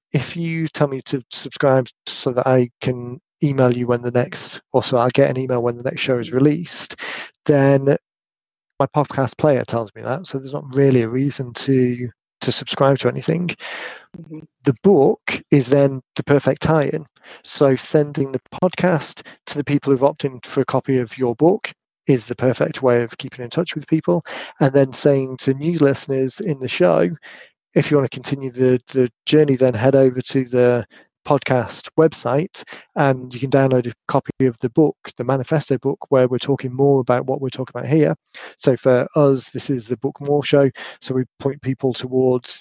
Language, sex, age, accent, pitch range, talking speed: English, male, 30-49, British, 125-145 Hz, 195 wpm